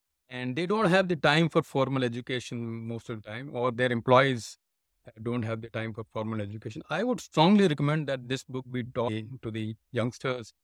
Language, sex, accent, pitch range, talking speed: English, male, Indian, 120-160 Hz, 195 wpm